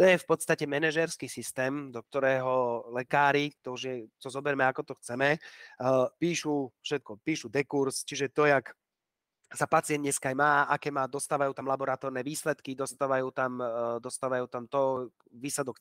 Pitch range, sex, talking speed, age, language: 135-160 Hz, male, 150 wpm, 30-49, Slovak